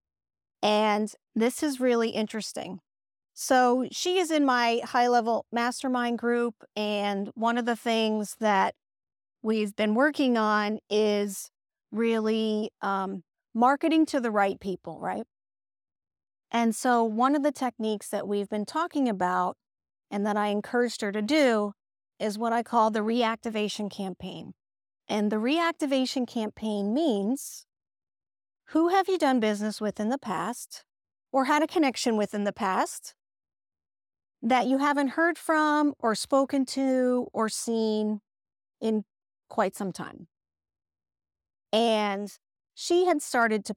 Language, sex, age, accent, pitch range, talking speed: English, female, 40-59, American, 200-255 Hz, 135 wpm